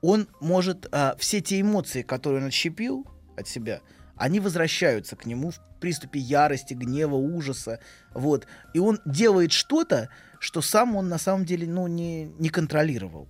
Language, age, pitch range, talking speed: Russian, 20-39, 120-165 Hz, 150 wpm